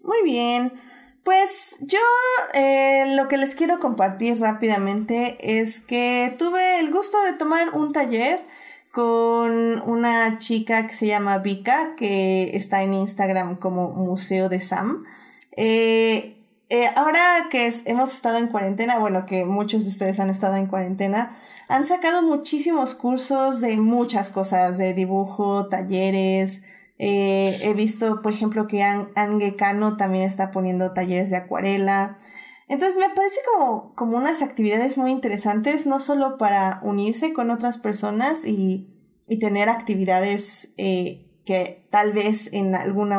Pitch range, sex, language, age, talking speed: 195-255 Hz, female, Spanish, 20-39, 140 wpm